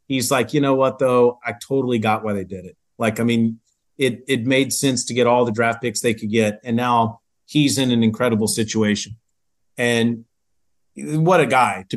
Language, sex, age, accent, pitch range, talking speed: English, male, 30-49, American, 110-130 Hz, 205 wpm